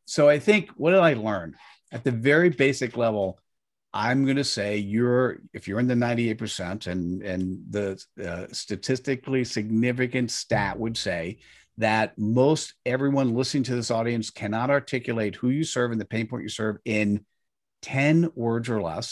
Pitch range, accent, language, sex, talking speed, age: 110-140 Hz, American, English, male, 170 wpm, 50-69